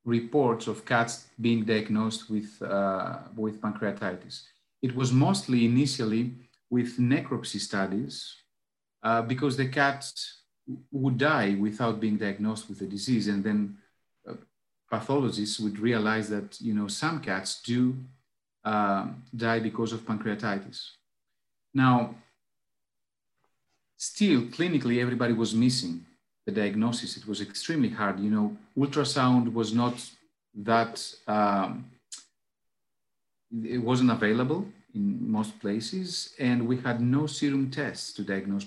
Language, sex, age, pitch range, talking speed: English, male, 40-59, 105-130 Hz, 125 wpm